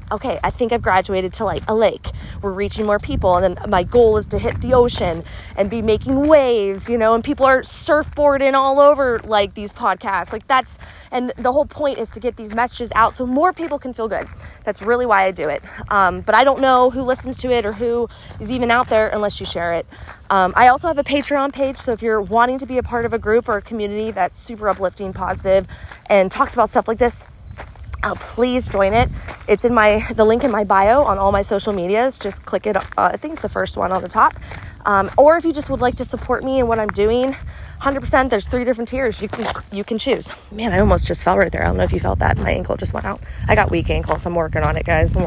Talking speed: 260 wpm